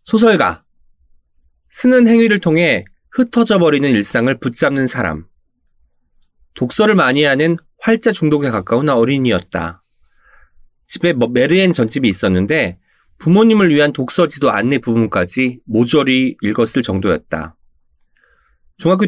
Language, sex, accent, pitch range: Korean, male, native, 115-175 Hz